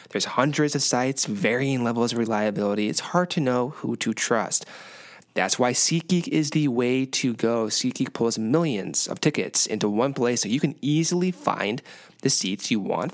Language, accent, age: English, American, 20-39